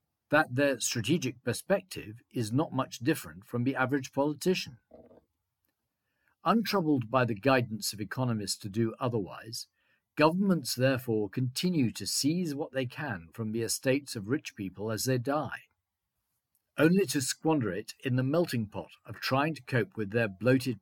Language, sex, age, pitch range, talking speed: English, male, 50-69, 110-140 Hz, 155 wpm